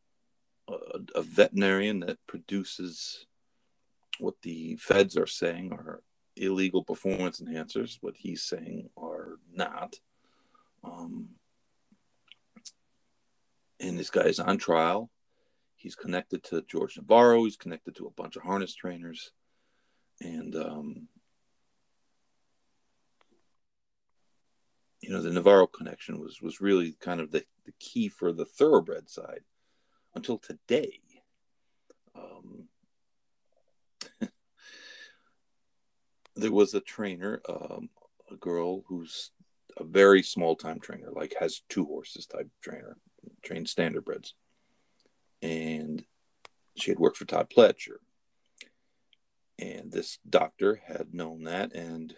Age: 40-59